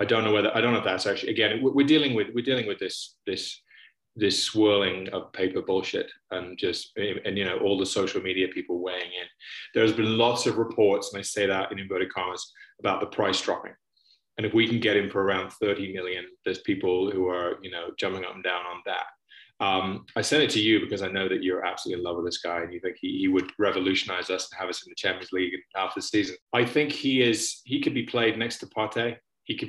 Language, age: English, 20-39